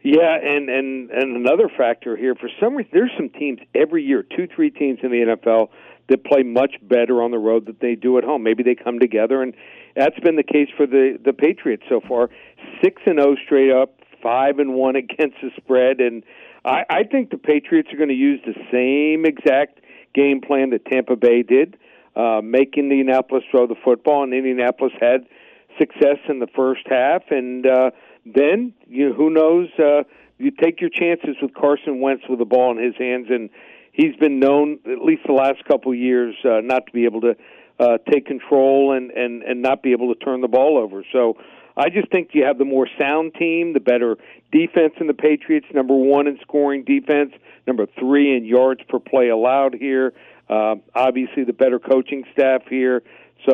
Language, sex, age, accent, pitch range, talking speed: English, male, 60-79, American, 125-150 Hz, 200 wpm